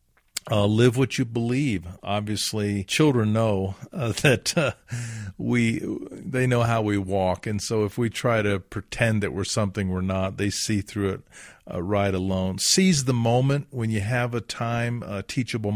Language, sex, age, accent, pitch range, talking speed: English, male, 50-69, American, 100-120 Hz, 175 wpm